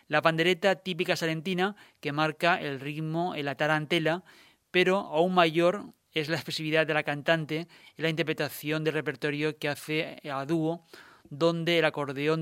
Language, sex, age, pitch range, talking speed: Spanish, male, 30-49, 150-170 Hz, 155 wpm